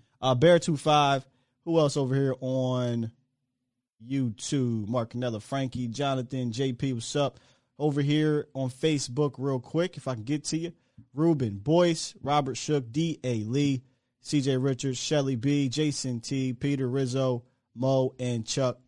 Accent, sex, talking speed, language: American, male, 140 wpm, English